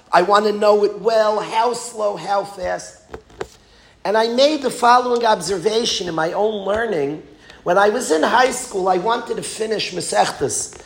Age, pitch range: 40-59, 180-230 Hz